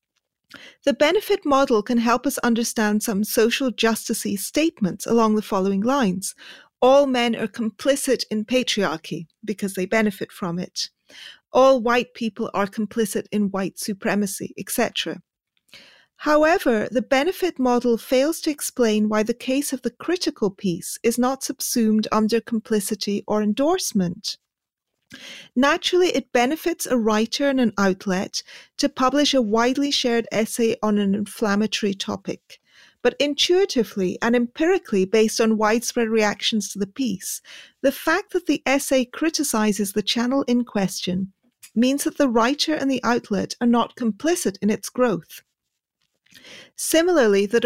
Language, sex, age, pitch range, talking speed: English, female, 40-59, 210-270 Hz, 140 wpm